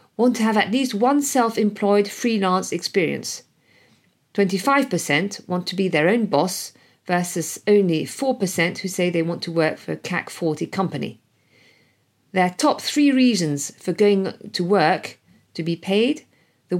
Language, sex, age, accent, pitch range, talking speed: French, female, 50-69, British, 165-235 Hz, 150 wpm